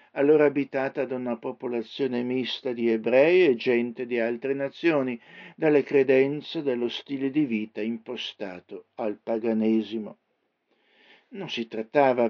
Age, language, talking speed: 60-79, Italian, 120 wpm